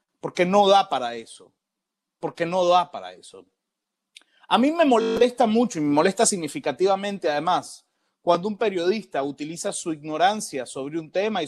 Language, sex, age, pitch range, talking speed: Spanish, male, 30-49, 180-245 Hz, 155 wpm